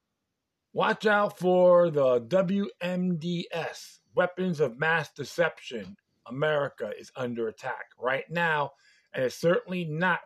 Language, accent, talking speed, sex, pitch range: English, American, 110 wpm, male, 140-185 Hz